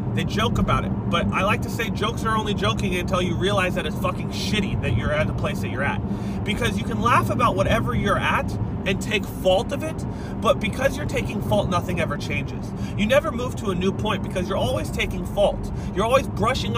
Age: 30-49